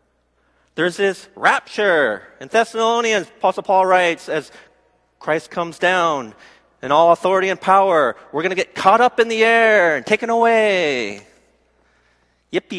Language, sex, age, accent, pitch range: Korean, male, 40-59, American, 175-225 Hz